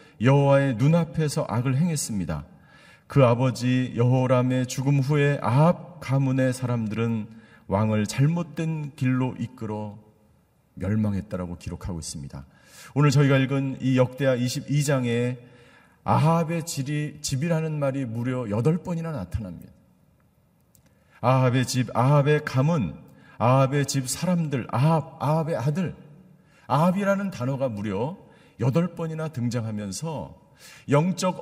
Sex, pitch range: male, 130-170 Hz